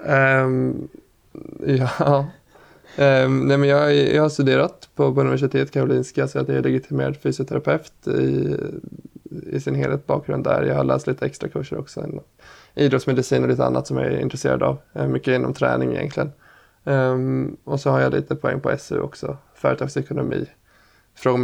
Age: 20-39